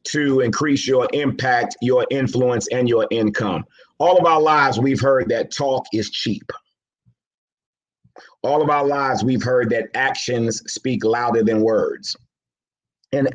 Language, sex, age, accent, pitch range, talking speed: English, male, 40-59, American, 115-140 Hz, 145 wpm